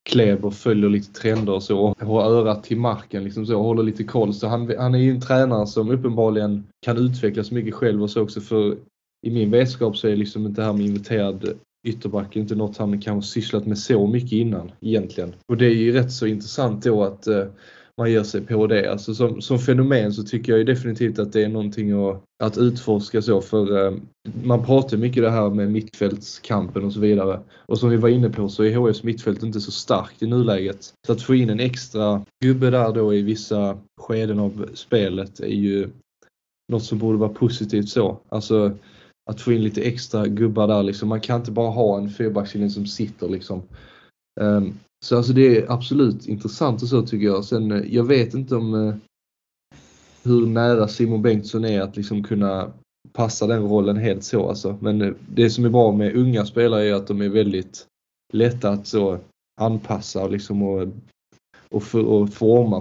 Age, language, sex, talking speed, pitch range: 10-29, Swedish, male, 205 wpm, 105-120 Hz